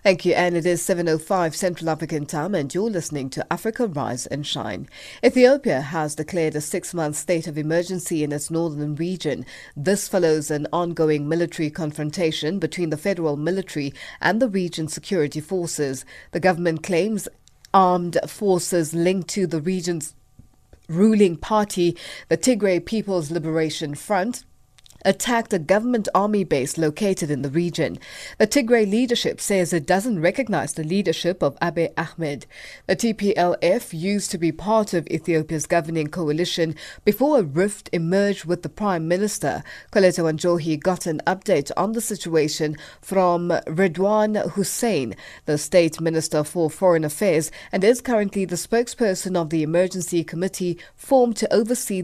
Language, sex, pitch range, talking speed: English, female, 160-195 Hz, 150 wpm